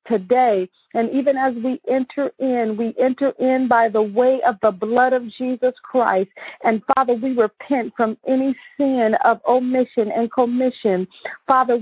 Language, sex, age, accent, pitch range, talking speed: English, female, 40-59, American, 230-270 Hz, 155 wpm